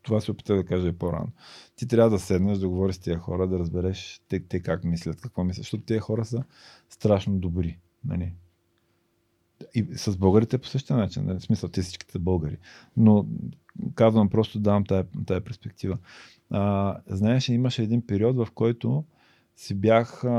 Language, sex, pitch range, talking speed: Bulgarian, male, 95-120 Hz, 175 wpm